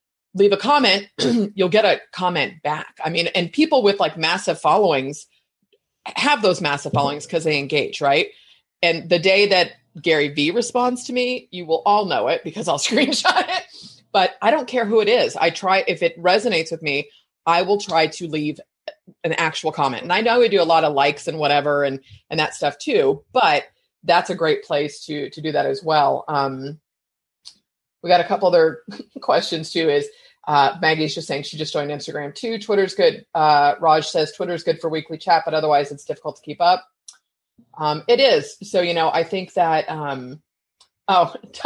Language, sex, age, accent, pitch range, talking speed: English, female, 30-49, American, 155-240 Hz, 195 wpm